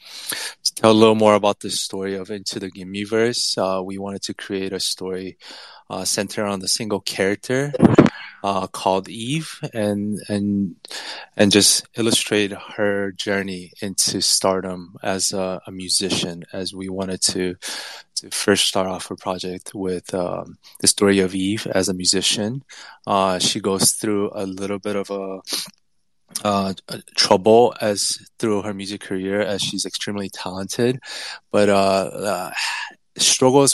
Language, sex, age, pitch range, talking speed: English, male, 20-39, 95-105 Hz, 150 wpm